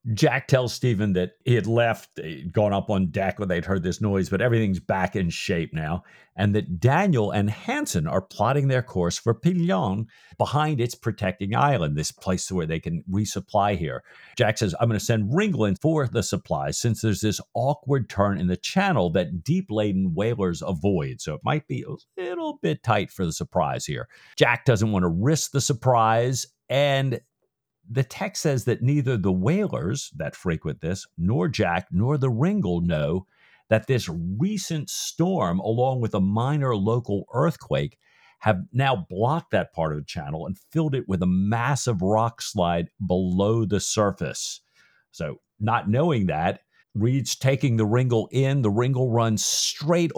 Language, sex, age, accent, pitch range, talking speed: English, male, 50-69, American, 95-140 Hz, 170 wpm